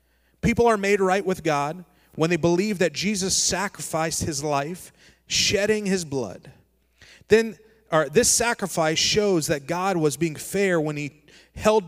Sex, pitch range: male, 145-190 Hz